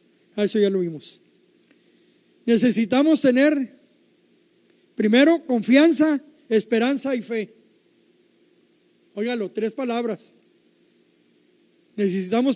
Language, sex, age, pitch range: Spanish, male, 40-59, 220-295 Hz